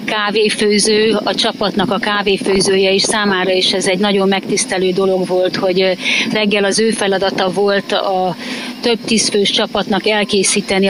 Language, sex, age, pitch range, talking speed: Hungarian, female, 30-49, 195-245 Hz, 140 wpm